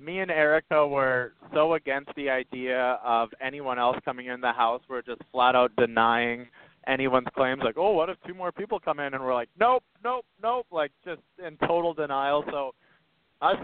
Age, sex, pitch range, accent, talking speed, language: 30-49, male, 125-160 Hz, American, 195 wpm, English